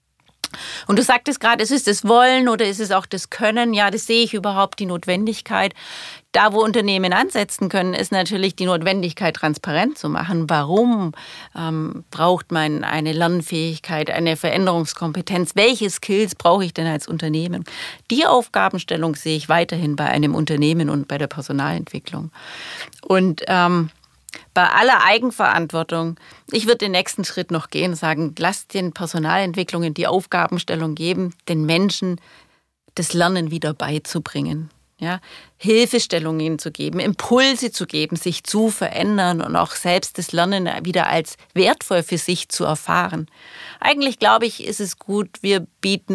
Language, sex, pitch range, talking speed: German, female, 165-205 Hz, 150 wpm